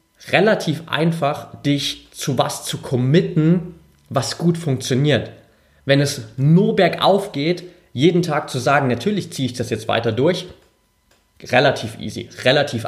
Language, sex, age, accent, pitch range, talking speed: German, male, 30-49, German, 120-160 Hz, 135 wpm